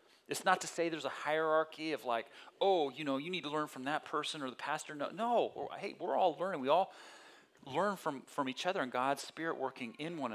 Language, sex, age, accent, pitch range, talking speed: English, male, 30-49, American, 130-200 Hz, 245 wpm